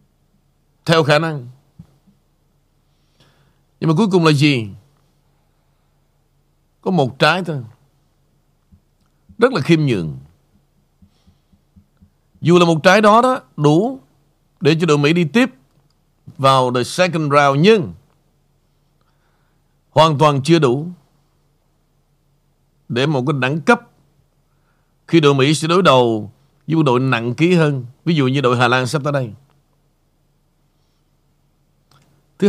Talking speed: 120 wpm